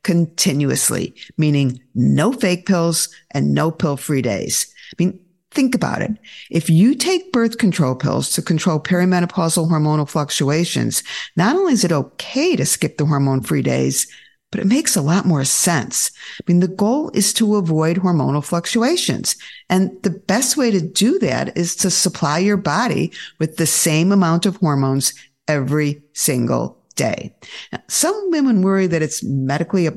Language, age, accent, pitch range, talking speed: English, 50-69, American, 150-205 Hz, 160 wpm